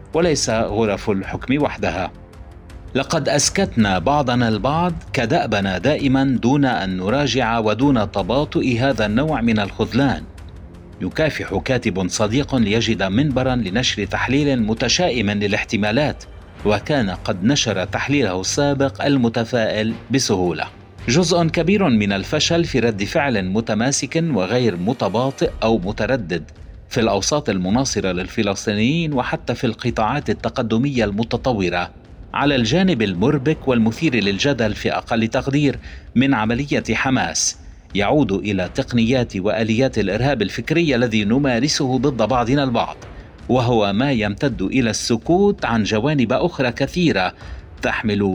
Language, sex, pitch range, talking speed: Arabic, male, 100-140 Hz, 110 wpm